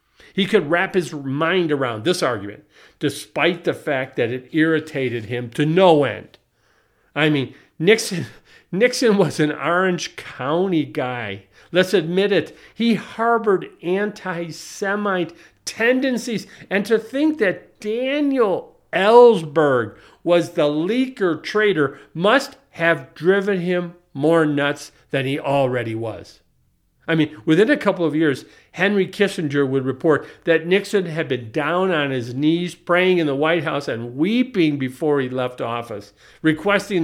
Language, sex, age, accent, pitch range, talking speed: English, male, 50-69, American, 140-195 Hz, 140 wpm